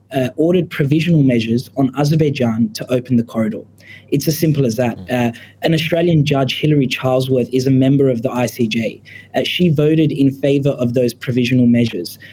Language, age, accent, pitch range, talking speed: English, 20-39, Australian, 125-150 Hz, 175 wpm